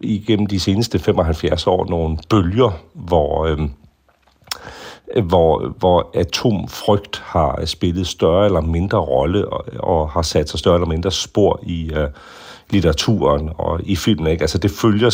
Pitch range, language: 80-95 Hz, Danish